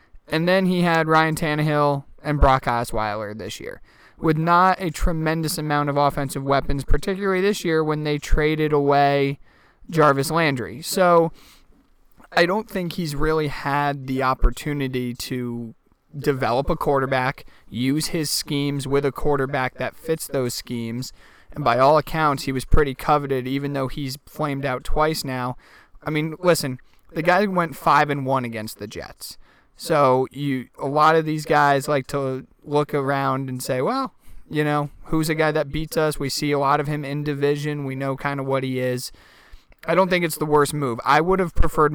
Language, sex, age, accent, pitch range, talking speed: English, male, 20-39, American, 135-155 Hz, 180 wpm